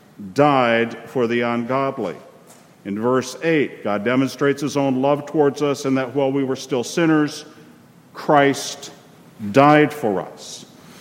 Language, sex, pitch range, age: English, male, 110-150 Hz, 50-69